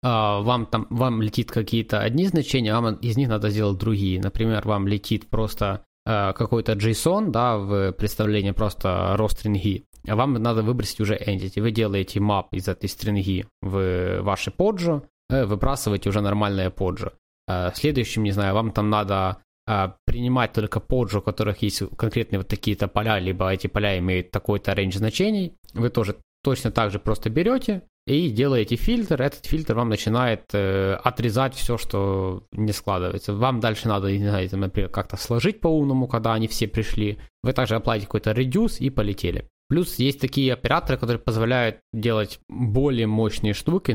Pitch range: 100-125 Hz